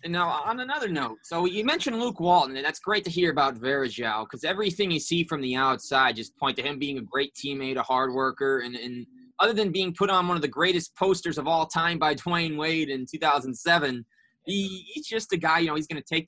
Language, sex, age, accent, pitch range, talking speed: English, male, 20-39, American, 140-185 Hz, 240 wpm